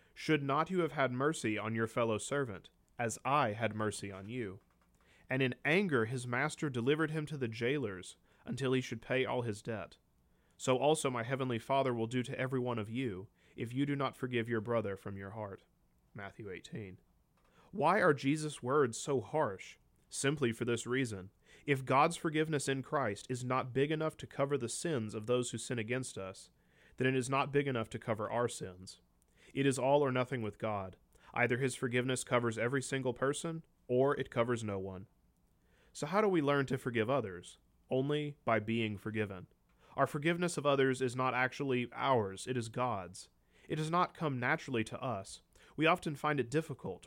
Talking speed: 190 wpm